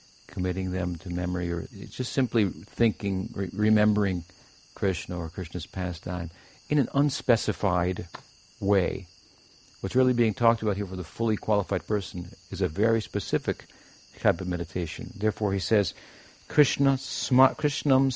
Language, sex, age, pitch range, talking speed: English, male, 60-79, 95-125 Hz, 130 wpm